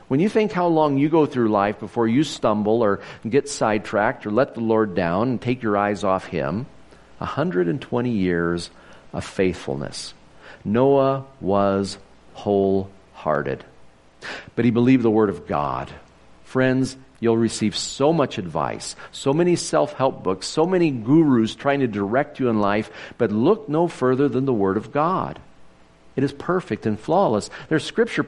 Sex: male